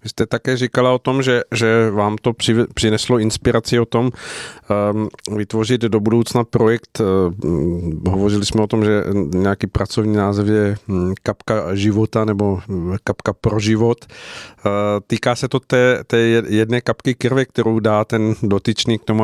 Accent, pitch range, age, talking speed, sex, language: native, 105-115 Hz, 50-69, 145 wpm, male, Czech